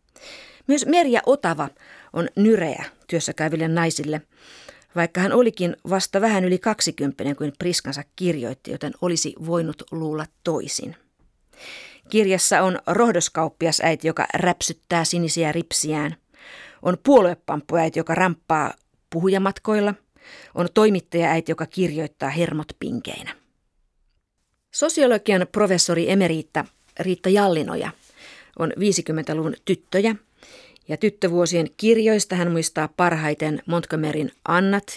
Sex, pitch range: female, 160-205 Hz